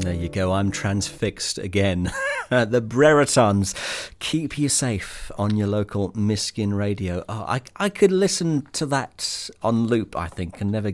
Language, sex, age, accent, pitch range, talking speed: English, male, 40-59, British, 90-115 Hz, 160 wpm